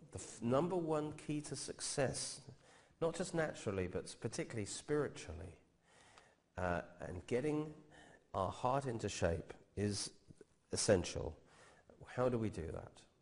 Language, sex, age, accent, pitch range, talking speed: English, male, 40-59, British, 100-145 Hz, 120 wpm